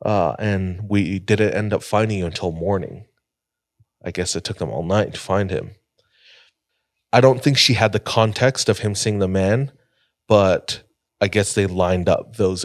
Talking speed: 185 wpm